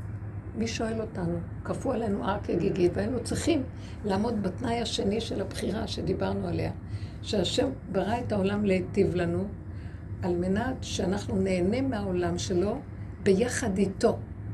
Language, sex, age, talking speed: Hebrew, female, 60-79, 130 wpm